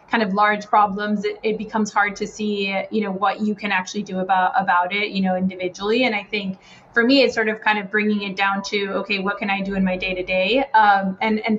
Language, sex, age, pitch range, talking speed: English, female, 20-39, 185-215 Hz, 250 wpm